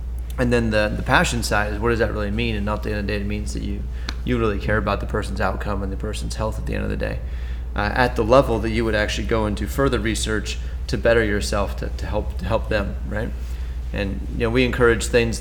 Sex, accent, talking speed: male, American, 265 wpm